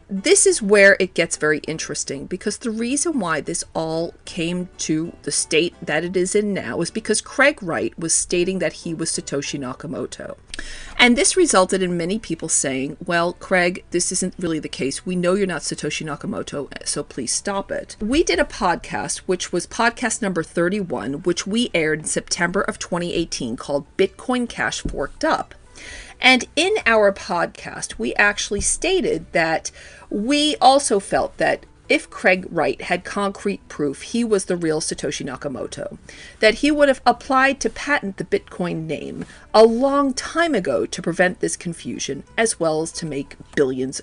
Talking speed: 170 wpm